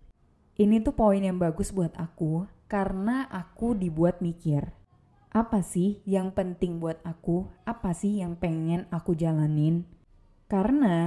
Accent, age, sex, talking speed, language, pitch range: native, 20-39, female, 130 wpm, Indonesian, 160-205 Hz